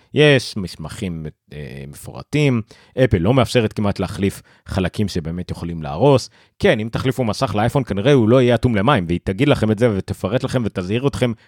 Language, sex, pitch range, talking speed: Hebrew, male, 100-145 Hz, 170 wpm